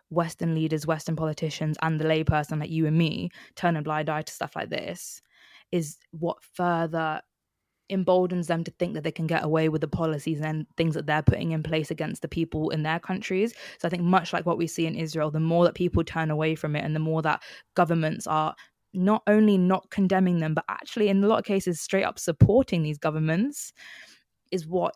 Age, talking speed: 20-39, 220 wpm